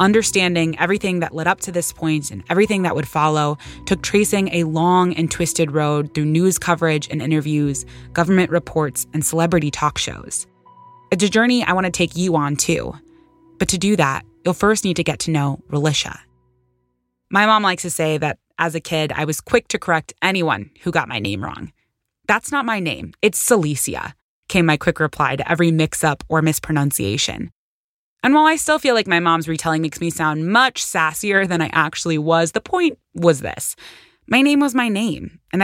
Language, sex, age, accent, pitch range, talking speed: English, female, 20-39, American, 155-190 Hz, 195 wpm